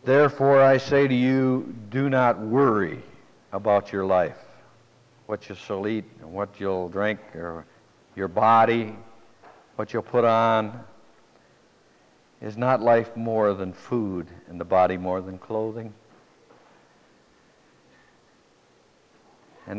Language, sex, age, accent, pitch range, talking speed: English, male, 60-79, American, 105-130 Hz, 120 wpm